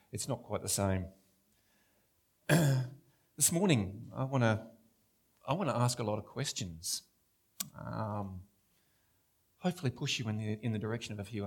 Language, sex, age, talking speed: English, male, 40-59, 150 wpm